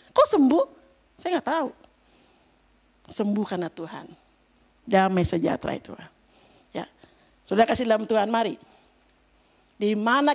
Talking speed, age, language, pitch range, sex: 110 wpm, 50-69, Indonesian, 225-345 Hz, female